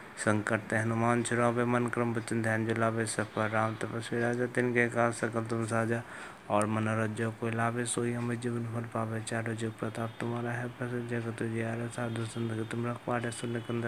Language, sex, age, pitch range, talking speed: Hindi, male, 20-39, 115-120 Hz, 110 wpm